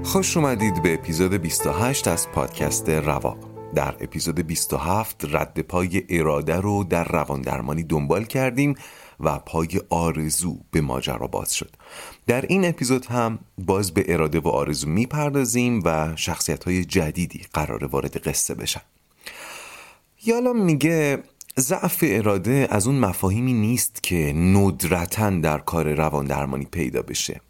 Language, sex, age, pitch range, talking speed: Persian, male, 30-49, 85-125 Hz, 130 wpm